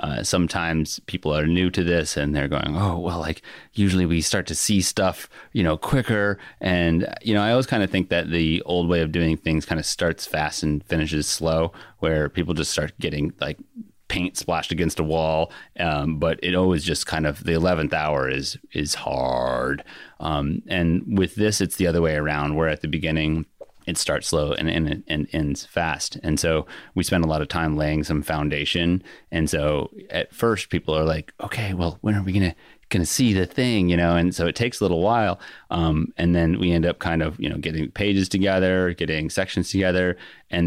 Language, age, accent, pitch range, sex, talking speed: English, 30-49, American, 80-95 Hz, male, 210 wpm